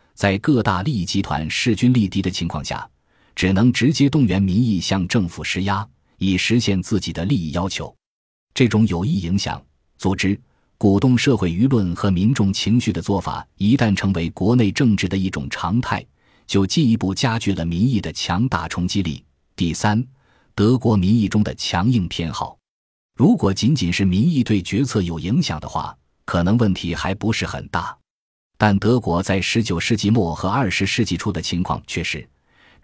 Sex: male